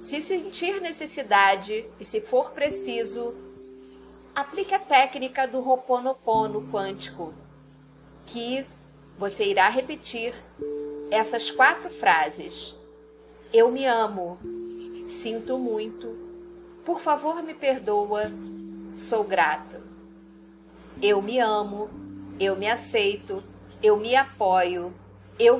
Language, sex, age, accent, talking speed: Portuguese, female, 40-59, Brazilian, 95 wpm